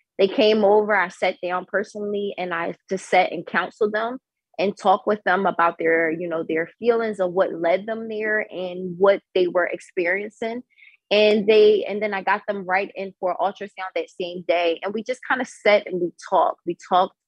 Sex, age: female, 20-39